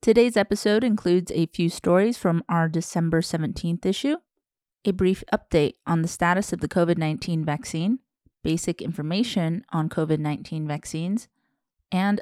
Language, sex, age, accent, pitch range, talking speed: English, female, 30-49, American, 160-205 Hz, 135 wpm